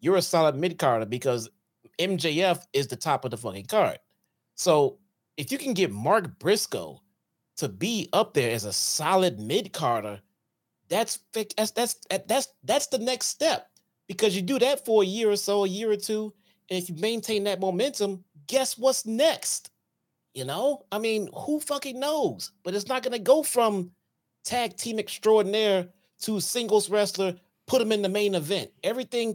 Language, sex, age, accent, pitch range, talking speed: English, male, 30-49, American, 140-215 Hz, 175 wpm